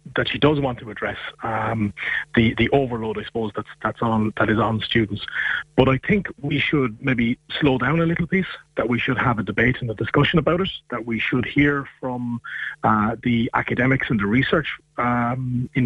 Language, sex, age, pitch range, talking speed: English, male, 30-49, 115-145 Hz, 205 wpm